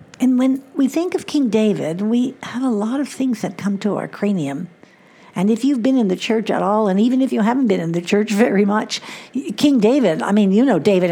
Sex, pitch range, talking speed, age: female, 175-225 Hz, 245 wpm, 60-79